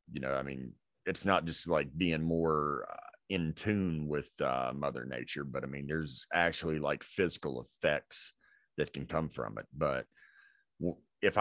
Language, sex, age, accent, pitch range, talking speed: English, male, 40-59, American, 75-105 Hz, 170 wpm